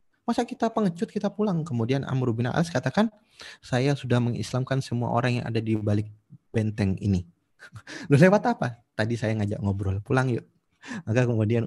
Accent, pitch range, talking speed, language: native, 105-130 Hz, 165 wpm, Indonesian